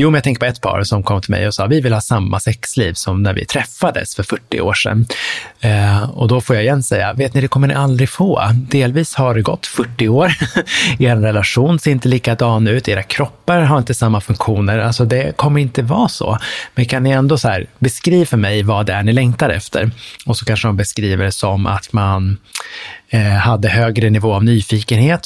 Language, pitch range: Swedish, 105-130 Hz